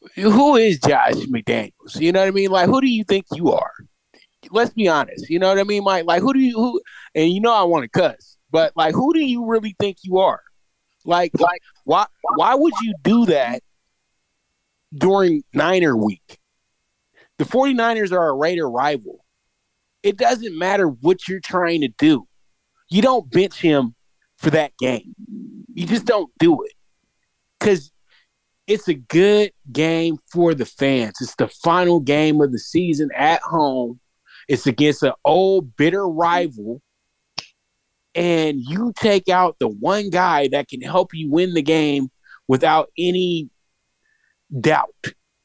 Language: English